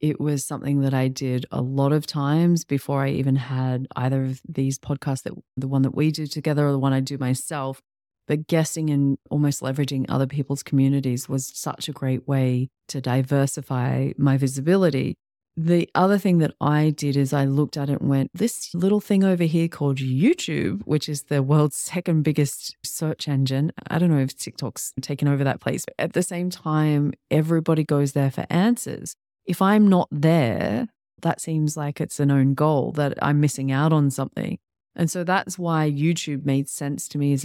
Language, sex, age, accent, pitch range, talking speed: English, female, 30-49, Australian, 135-155 Hz, 195 wpm